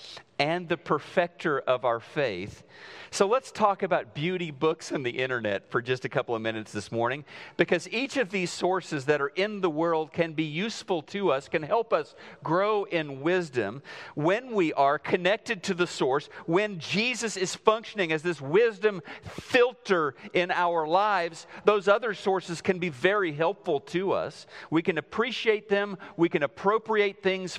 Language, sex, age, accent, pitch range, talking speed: English, male, 40-59, American, 155-195 Hz, 170 wpm